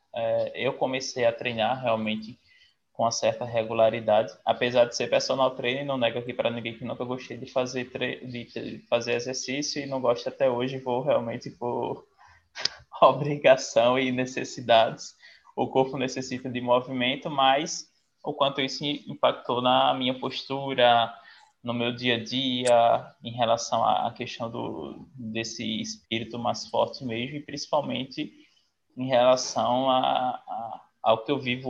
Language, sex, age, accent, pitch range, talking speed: Portuguese, male, 20-39, Brazilian, 120-135 Hz, 150 wpm